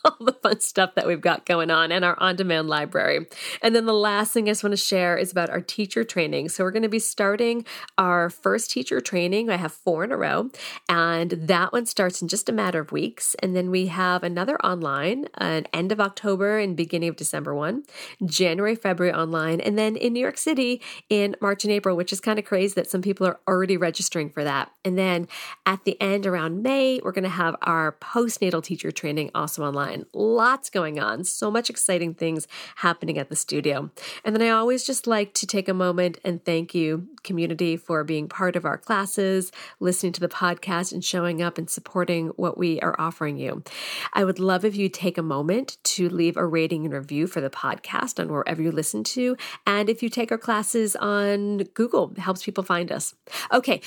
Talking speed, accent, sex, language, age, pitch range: 215 wpm, American, female, English, 40-59, 170-210 Hz